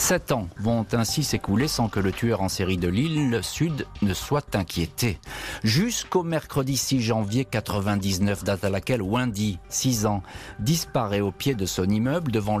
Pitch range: 95-120 Hz